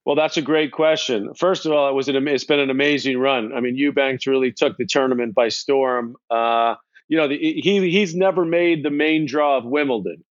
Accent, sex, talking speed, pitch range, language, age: American, male, 225 wpm, 135-165 Hz, English, 40-59